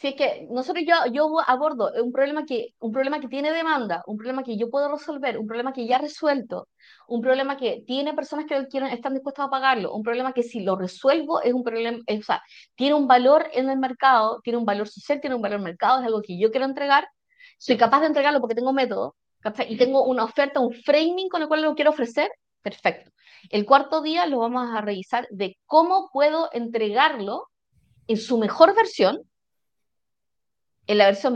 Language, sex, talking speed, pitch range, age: Spanish, female, 210 wpm, 235-305 Hz, 20-39